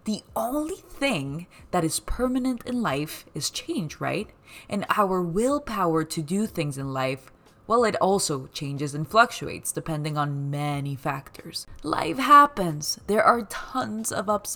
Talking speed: 150 wpm